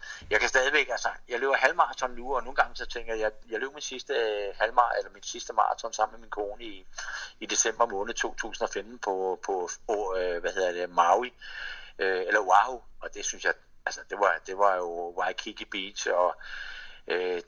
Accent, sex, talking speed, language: native, male, 190 wpm, Danish